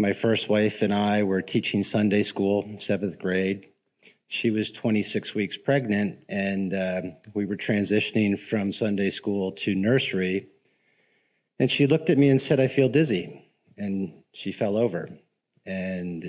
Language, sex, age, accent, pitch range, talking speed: English, male, 50-69, American, 95-110 Hz, 150 wpm